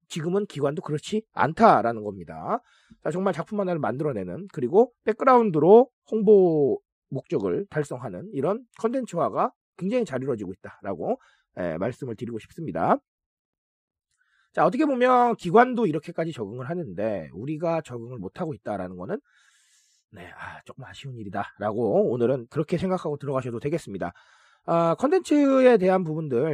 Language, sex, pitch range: Korean, male, 140-230 Hz